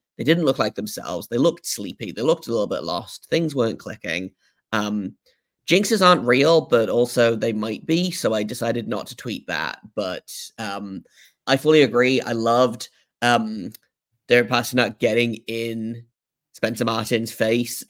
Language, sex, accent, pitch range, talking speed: English, male, British, 115-130 Hz, 160 wpm